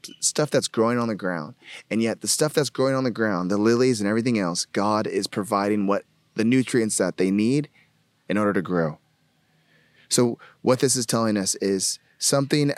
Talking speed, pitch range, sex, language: 195 wpm, 105-130 Hz, male, English